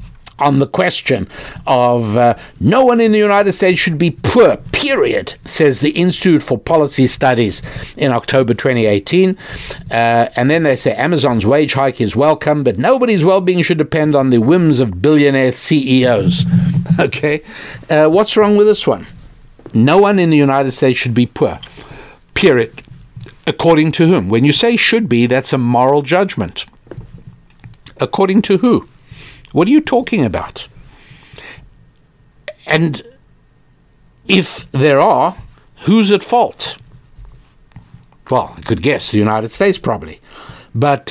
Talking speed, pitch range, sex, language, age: 145 wpm, 125-170 Hz, male, English, 60-79